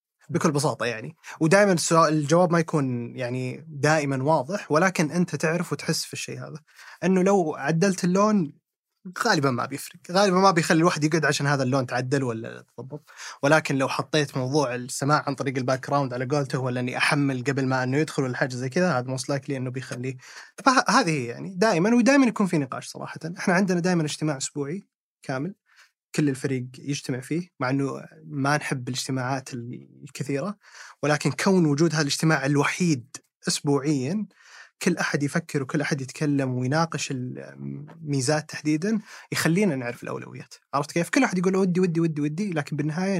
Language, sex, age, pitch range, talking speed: Arabic, male, 20-39, 135-170 Hz, 165 wpm